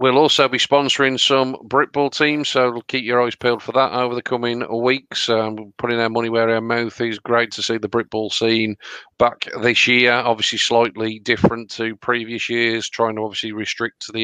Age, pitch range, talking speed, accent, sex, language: 40-59, 105-120 Hz, 195 wpm, British, male, English